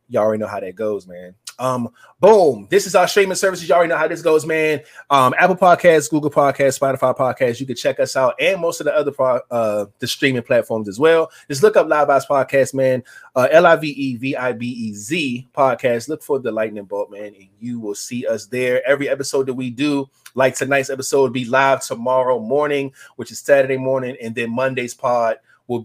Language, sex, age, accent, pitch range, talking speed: English, male, 20-39, American, 125-160 Hz, 205 wpm